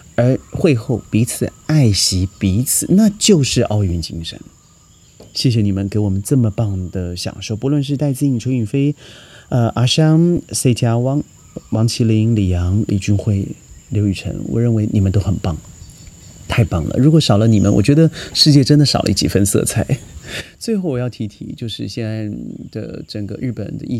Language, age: Chinese, 30-49